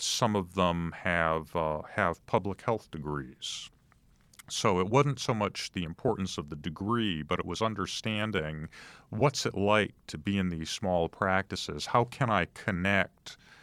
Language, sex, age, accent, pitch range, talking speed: English, male, 40-59, American, 85-105 Hz, 160 wpm